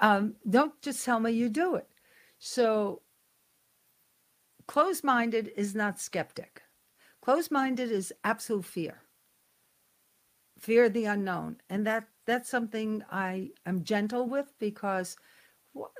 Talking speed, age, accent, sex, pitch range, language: 115 wpm, 60-79, American, female, 190-255 Hz, English